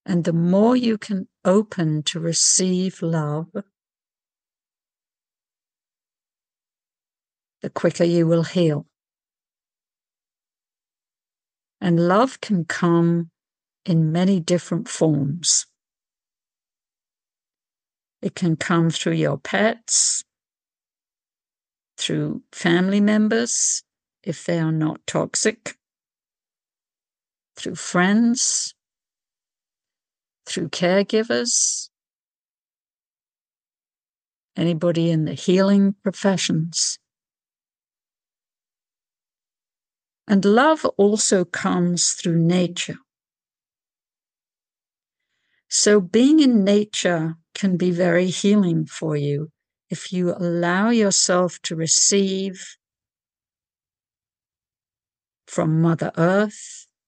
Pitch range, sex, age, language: 165-200 Hz, female, 60-79, English